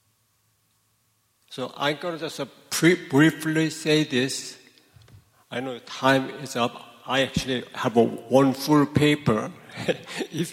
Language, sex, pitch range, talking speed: English, male, 115-150 Hz, 115 wpm